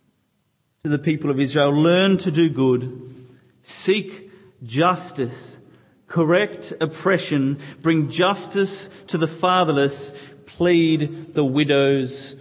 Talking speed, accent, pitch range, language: 95 wpm, Australian, 140-170 Hz, English